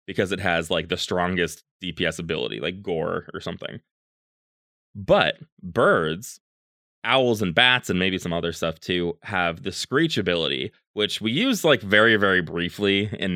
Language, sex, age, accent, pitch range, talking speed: English, male, 20-39, American, 90-115 Hz, 155 wpm